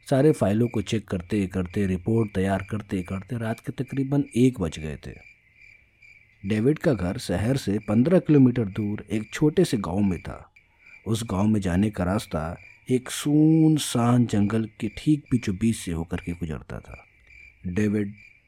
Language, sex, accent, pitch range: Hindi, male, native, 90-115 Hz